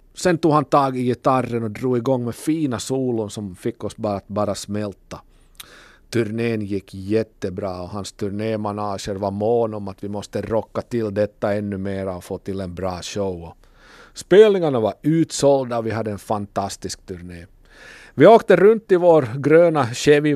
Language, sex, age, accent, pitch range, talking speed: Swedish, male, 50-69, Finnish, 105-140 Hz, 170 wpm